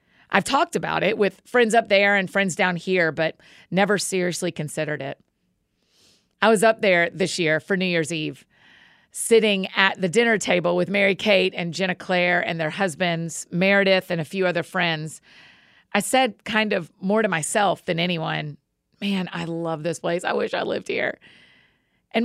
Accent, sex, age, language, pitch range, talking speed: American, female, 40-59, English, 175-220 Hz, 180 wpm